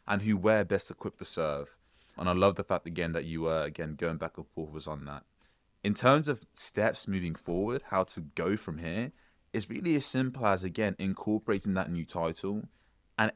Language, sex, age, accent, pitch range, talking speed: English, male, 20-39, British, 85-105 Hz, 205 wpm